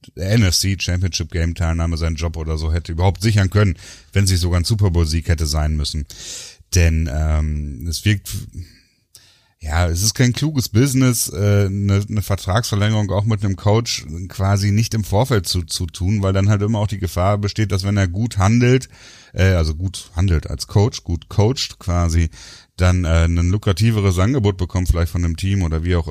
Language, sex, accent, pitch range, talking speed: German, male, German, 85-110 Hz, 175 wpm